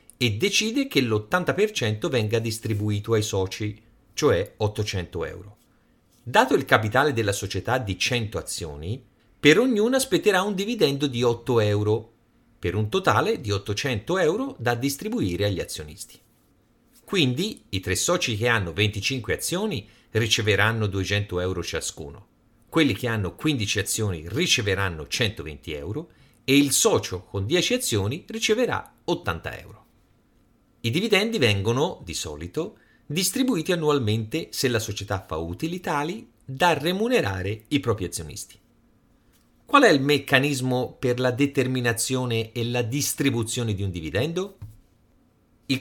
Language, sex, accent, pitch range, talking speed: Italian, male, native, 105-155 Hz, 130 wpm